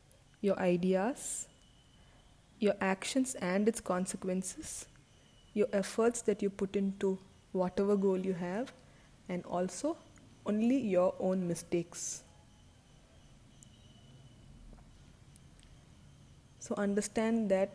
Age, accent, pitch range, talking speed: 20-39, Indian, 180-205 Hz, 90 wpm